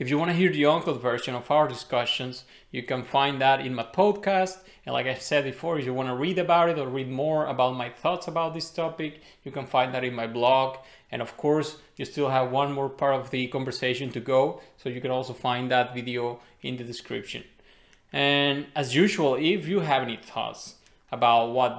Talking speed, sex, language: 220 wpm, male, English